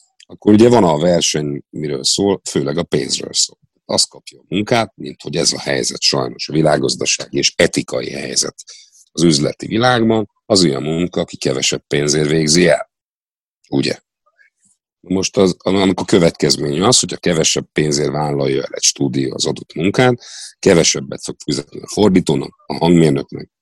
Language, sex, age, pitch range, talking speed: Hungarian, male, 50-69, 75-100 Hz, 160 wpm